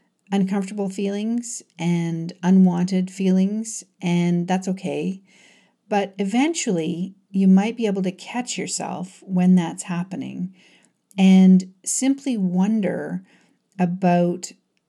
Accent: American